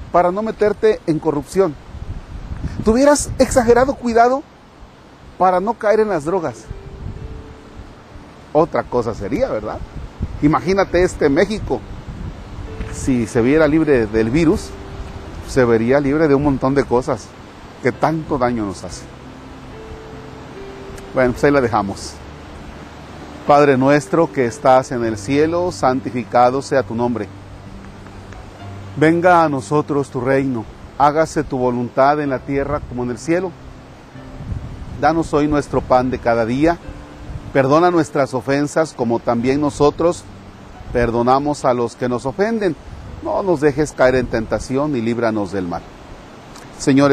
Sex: male